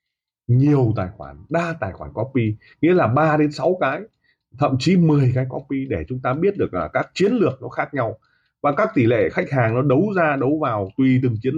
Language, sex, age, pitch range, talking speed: Vietnamese, male, 20-39, 110-150 Hz, 230 wpm